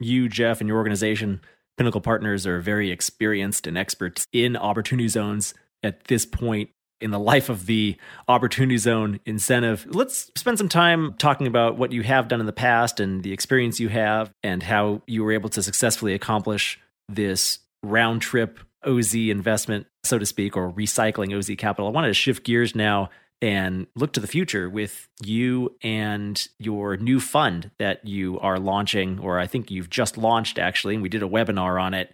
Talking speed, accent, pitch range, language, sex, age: 185 wpm, American, 95-115 Hz, English, male, 30-49